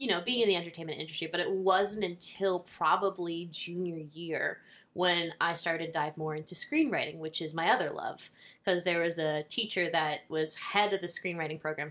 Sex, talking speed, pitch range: female, 195 wpm, 160-195 Hz